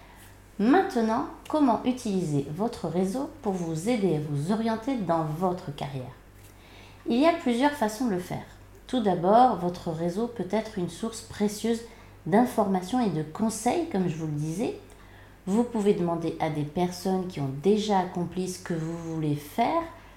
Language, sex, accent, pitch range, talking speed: French, female, French, 160-220 Hz, 165 wpm